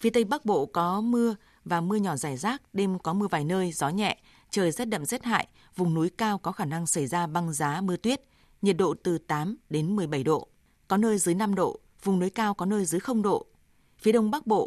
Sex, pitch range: female, 170-215 Hz